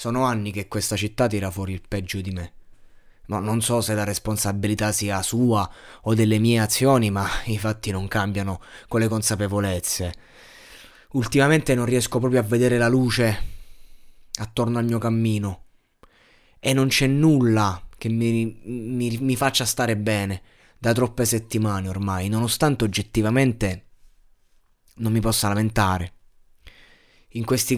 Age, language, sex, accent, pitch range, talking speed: 20-39, Italian, male, native, 100-125 Hz, 145 wpm